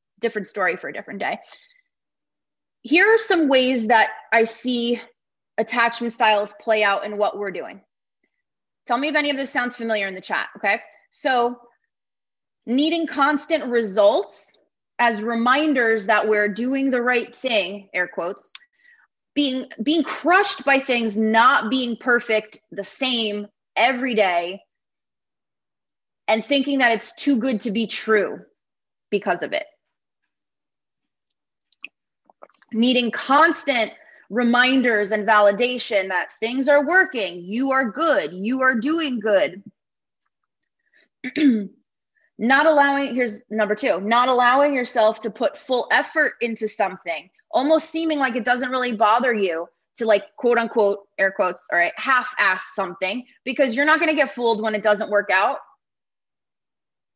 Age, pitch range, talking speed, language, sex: 20-39, 215-280 Hz, 140 wpm, English, female